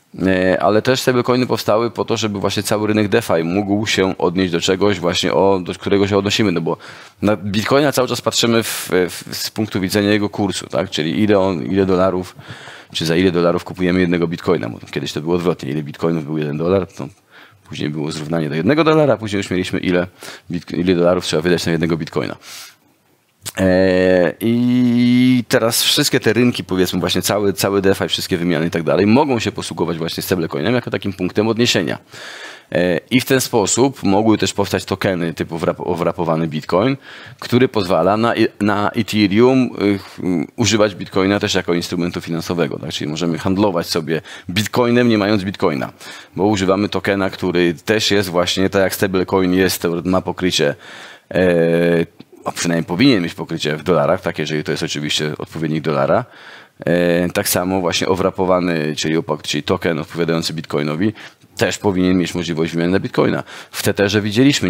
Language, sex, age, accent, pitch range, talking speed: Polish, male, 30-49, native, 85-105 Hz, 170 wpm